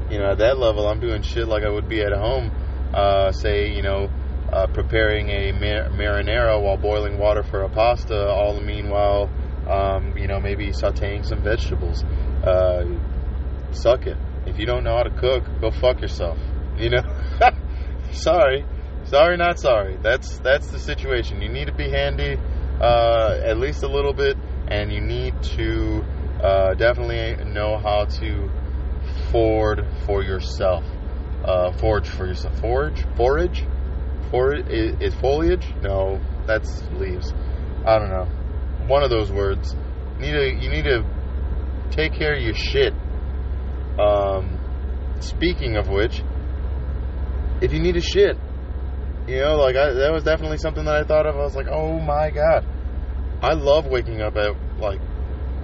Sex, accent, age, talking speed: male, American, 20-39, 160 wpm